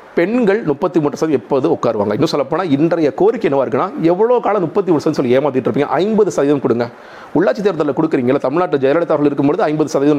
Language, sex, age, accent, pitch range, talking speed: Tamil, male, 40-59, native, 145-200 Hz, 190 wpm